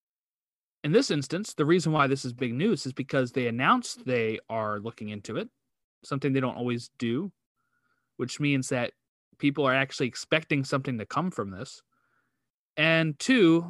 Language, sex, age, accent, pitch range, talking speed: English, male, 30-49, American, 130-170 Hz, 165 wpm